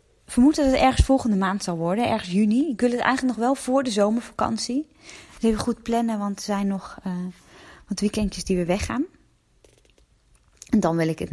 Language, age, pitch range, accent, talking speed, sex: Dutch, 20-39, 190-245 Hz, Dutch, 195 wpm, female